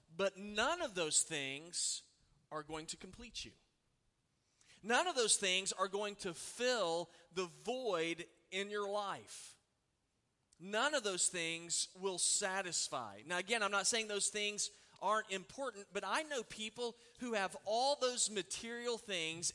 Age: 40-59